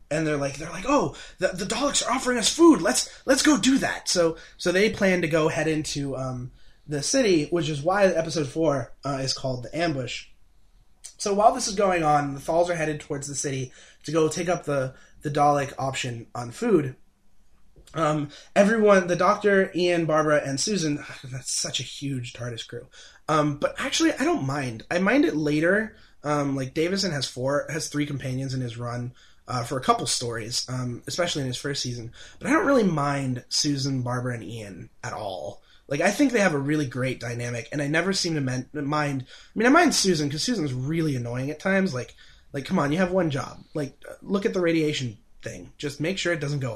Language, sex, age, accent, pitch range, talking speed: English, male, 20-39, American, 135-180 Hz, 215 wpm